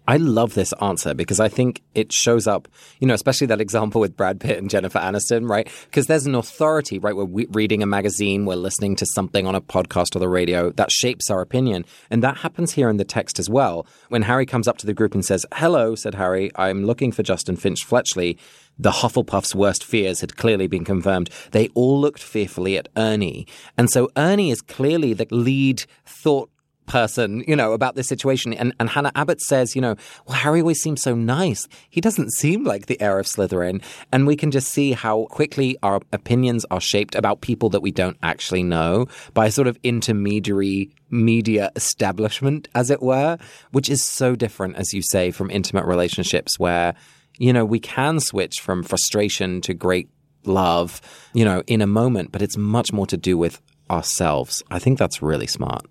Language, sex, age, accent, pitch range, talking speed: English, male, 20-39, British, 95-130 Hz, 200 wpm